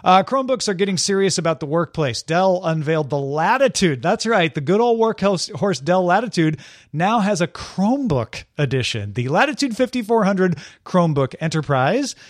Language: English